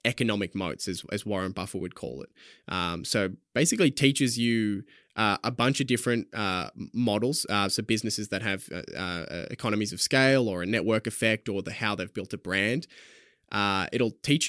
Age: 20-39